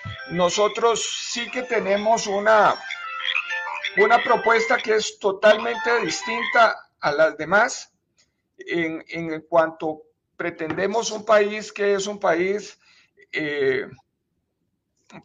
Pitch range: 180-230 Hz